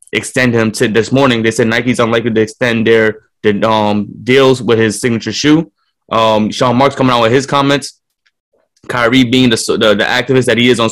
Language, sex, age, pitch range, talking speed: English, male, 20-39, 115-130 Hz, 205 wpm